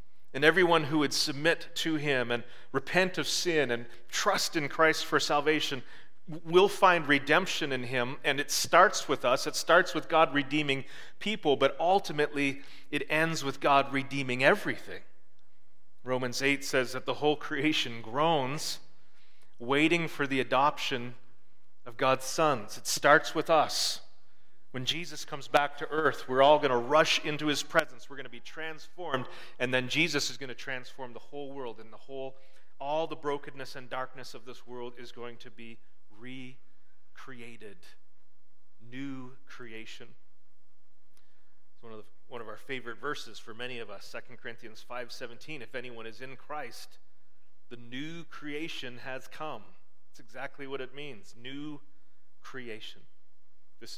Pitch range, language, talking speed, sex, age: 120-150 Hz, English, 160 wpm, male, 40-59